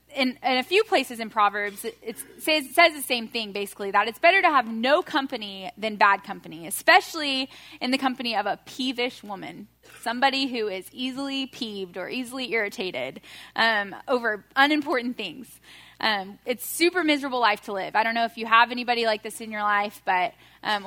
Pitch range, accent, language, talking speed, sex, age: 215-265 Hz, American, English, 190 wpm, female, 10-29